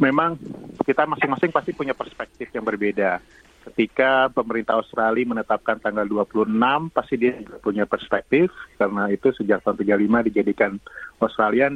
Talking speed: 130 wpm